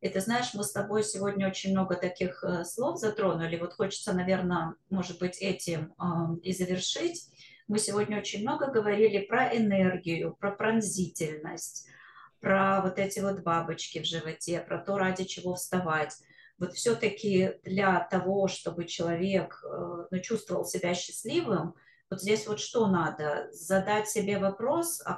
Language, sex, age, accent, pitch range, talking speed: Russian, female, 20-39, native, 165-200 Hz, 140 wpm